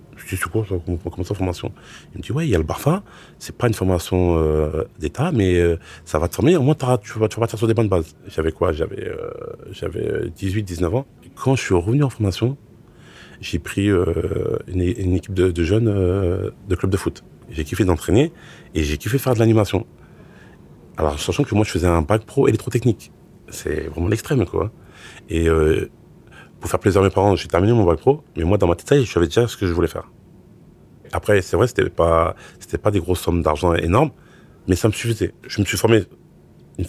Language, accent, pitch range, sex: French, French, 85-115 Hz, male